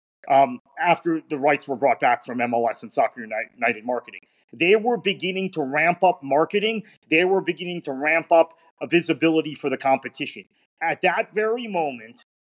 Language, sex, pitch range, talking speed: English, male, 155-225 Hz, 170 wpm